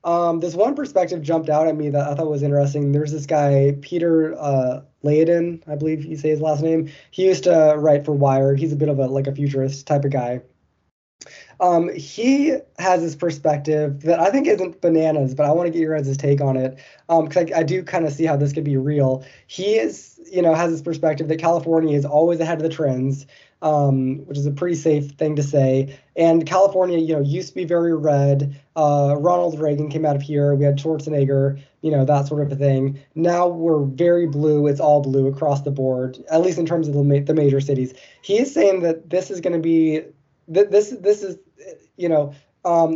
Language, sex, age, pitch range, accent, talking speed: English, male, 20-39, 140-170 Hz, American, 225 wpm